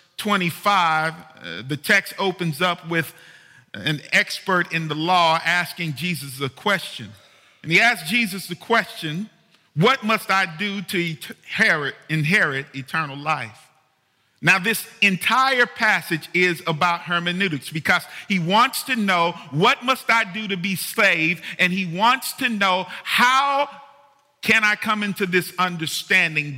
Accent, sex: American, male